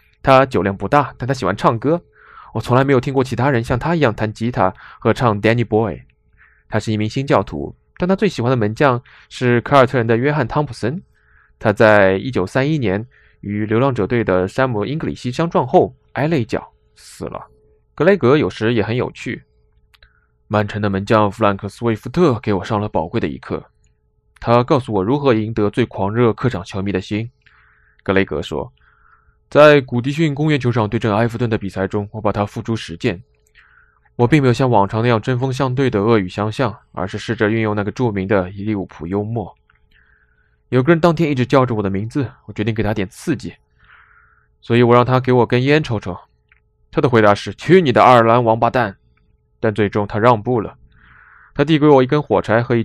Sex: male